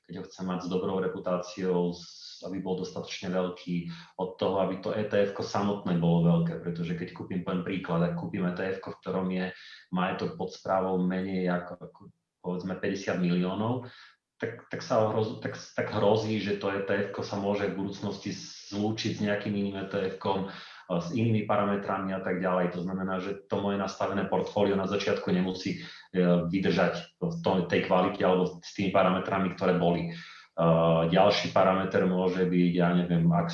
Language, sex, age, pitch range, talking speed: Slovak, male, 30-49, 90-105 Hz, 165 wpm